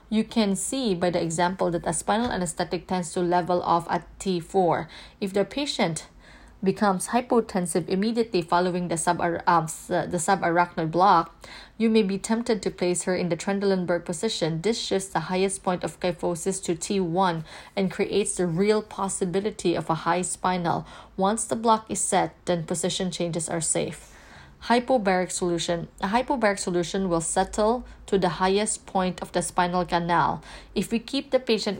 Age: 20-39